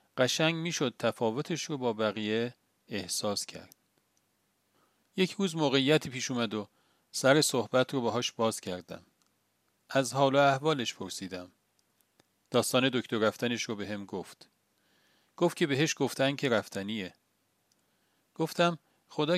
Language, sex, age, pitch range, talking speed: Persian, male, 40-59, 110-145 Hz, 120 wpm